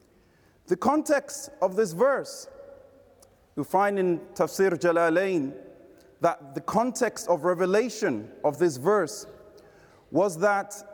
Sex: male